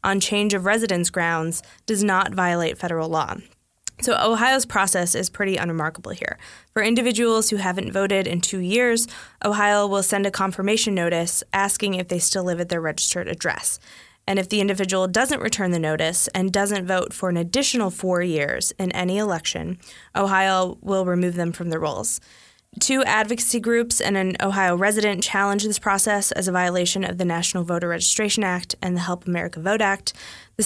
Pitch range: 180-210 Hz